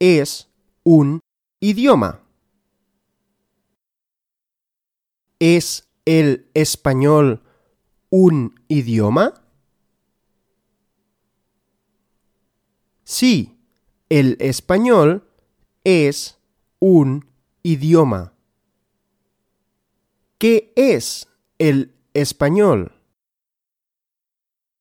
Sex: male